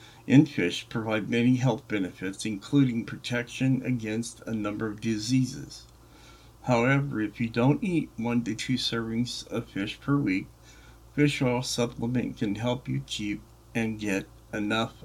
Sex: male